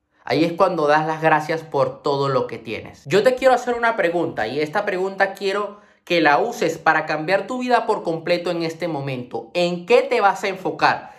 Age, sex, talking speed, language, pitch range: 20-39, male, 210 wpm, Spanish, 160-210 Hz